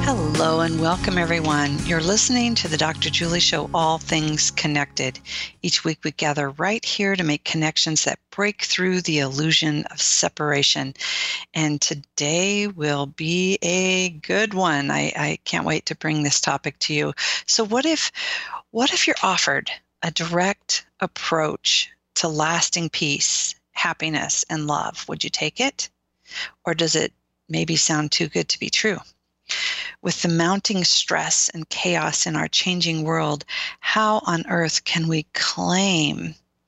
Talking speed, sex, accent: 150 wpm, female, American